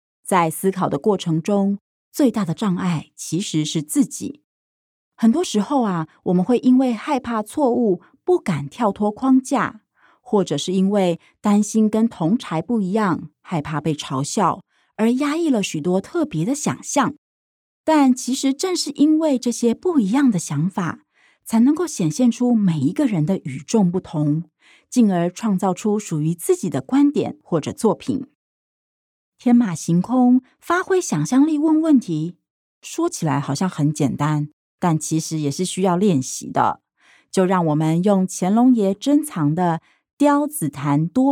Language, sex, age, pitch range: Chinese, female, 30-49, 160-255 Hz